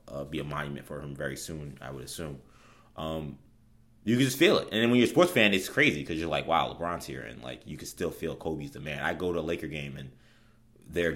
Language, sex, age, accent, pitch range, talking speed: English, male, 30-49, American, 75-100 Hz, 265 wpm